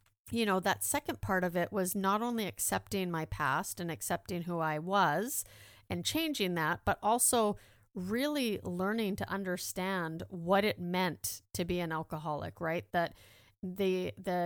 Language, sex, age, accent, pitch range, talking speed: English, female, 40-59, American, 165-195 Hz, 160 wpm